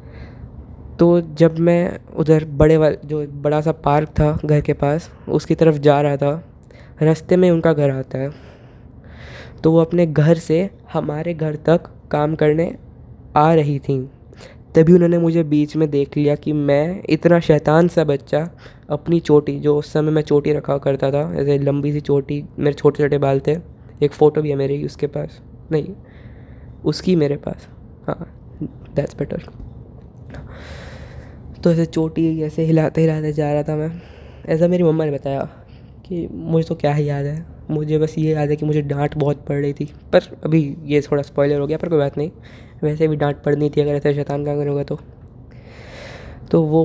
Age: 20-39